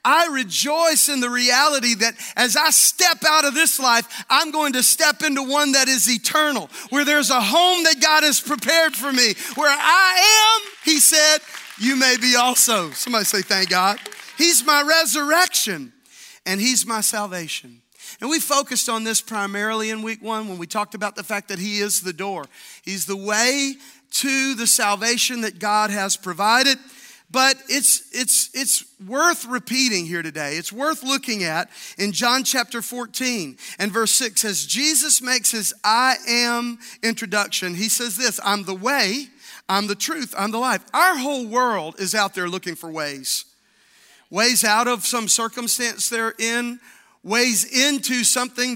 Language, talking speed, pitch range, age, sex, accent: English, 170 wpm, 210-285 Hz, 40-59, male, American